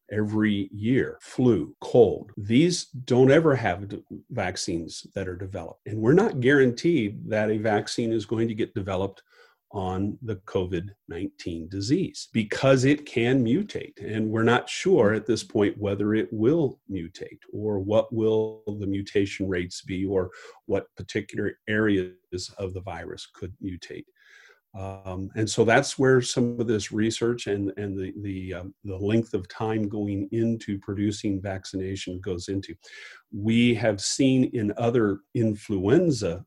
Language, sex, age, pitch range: English, male, 40-59, 95-115 Hz